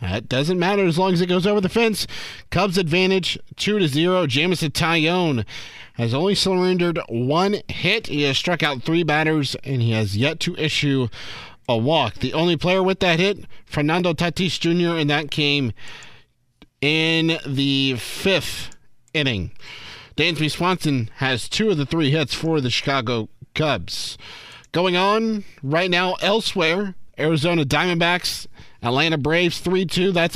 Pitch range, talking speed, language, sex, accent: 140-185 Hz, 145 wpm, English, male, American